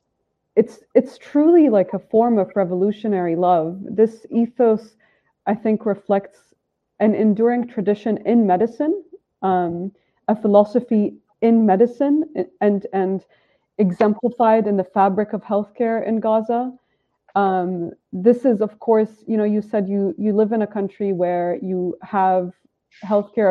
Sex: female